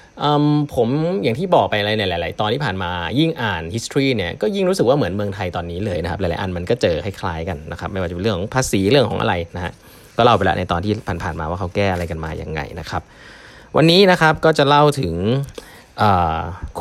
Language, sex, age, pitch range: Thai, male, 20-39, 90-120 Hz